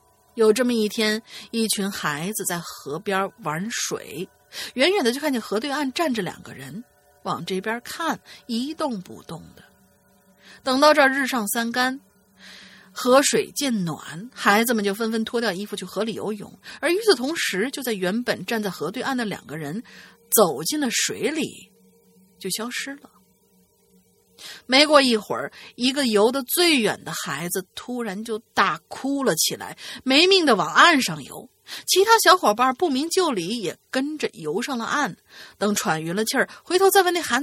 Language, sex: Chinese, female